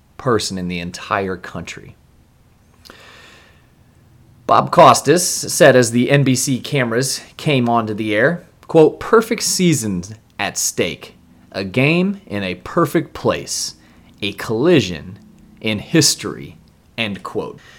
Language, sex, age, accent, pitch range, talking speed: English, male, 30-49, American, 105-160 Hz, 110 wpm